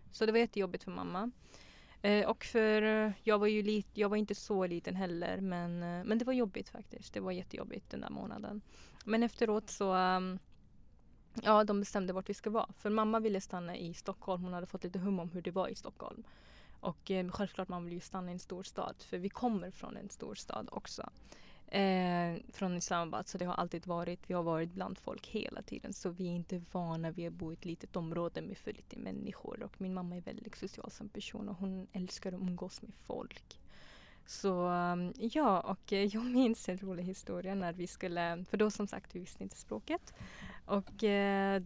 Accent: Swedish